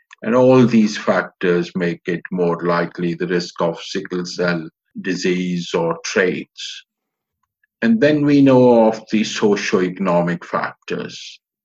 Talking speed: 125 wpm